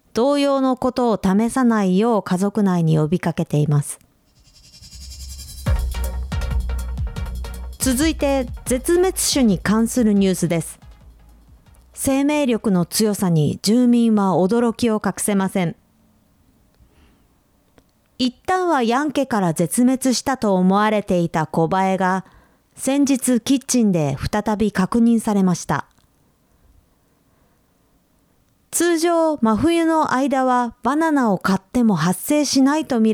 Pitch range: 180-255 Hz